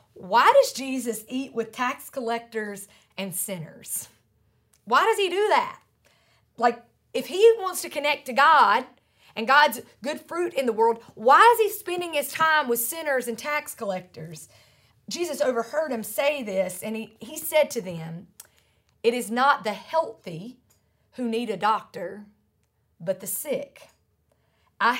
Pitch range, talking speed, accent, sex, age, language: 180-245 Hz, 155 wpm, American, female, 40-59, English